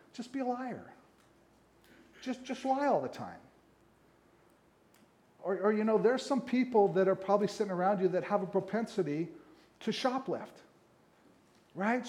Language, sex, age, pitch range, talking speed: English, male, 50-69, 190-230 Hz, 150 wpm